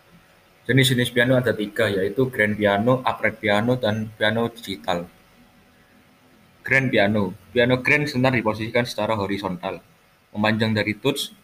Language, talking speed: Indonesian, 120 wpm